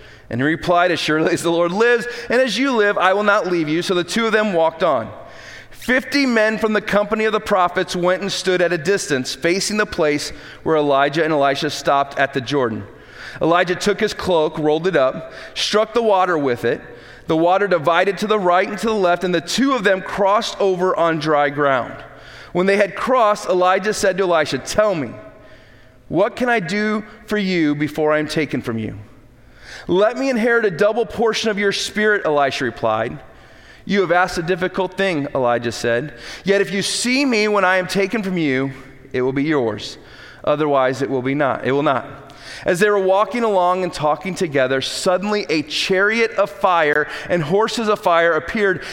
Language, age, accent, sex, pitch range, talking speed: English, 30-49, American, male, 150-205 Hz, 200 wpm